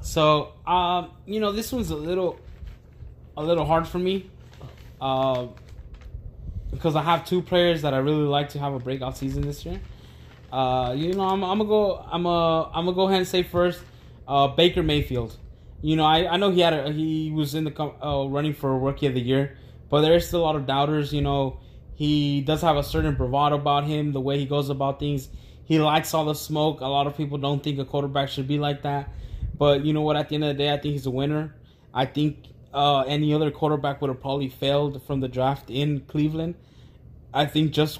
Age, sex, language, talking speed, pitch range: 20-39, male, English, 225 wpm, 130-150 Hz